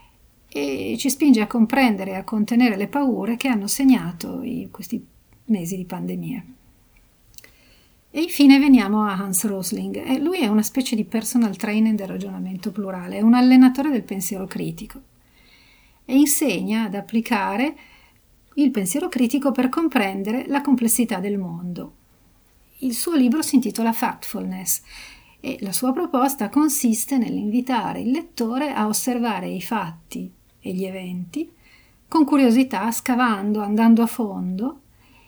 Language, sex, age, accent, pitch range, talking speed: Italian, female, 40-59, native, 210-270 Hz, 140 wpm